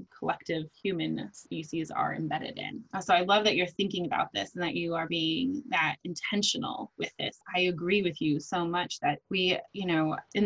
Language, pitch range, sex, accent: English, 160-190 Hz, female, American